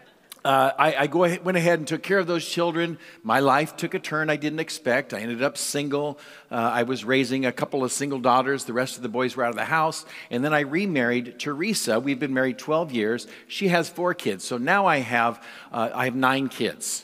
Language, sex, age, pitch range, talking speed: English, male, 50-69, 130-170 Hz, 225 wpm